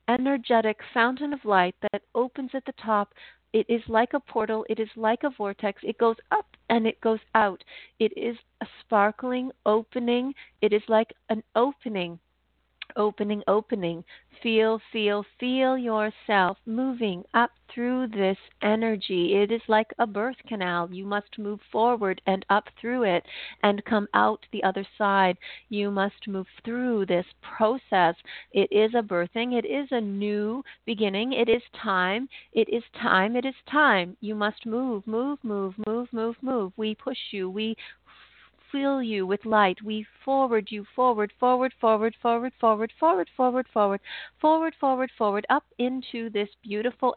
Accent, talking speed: American, 160 wpm